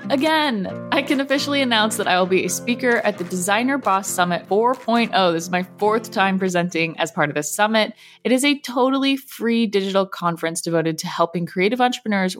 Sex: female